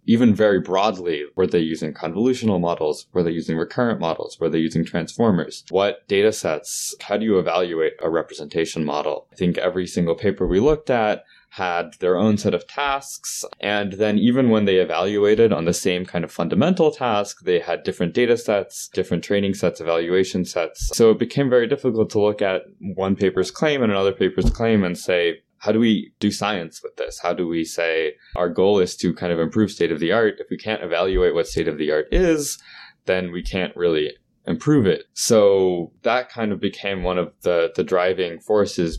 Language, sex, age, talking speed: English, male, 20-39, 200 wpm